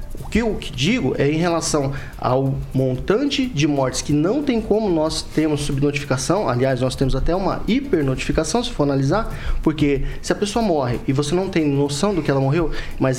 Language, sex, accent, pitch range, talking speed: Portuguese, male, Brazilian, 140-210 Hz, 200 wpm